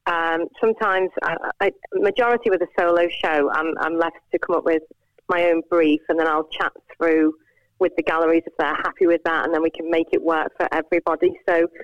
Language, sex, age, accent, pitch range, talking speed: English, female, 30-49, British, 160-180 Hz, 215 wpm